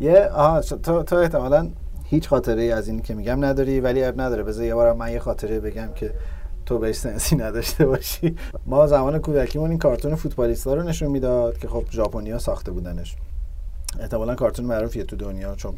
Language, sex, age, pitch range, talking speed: Persian, male, 30-49, 105-130 Hz, 185 wpm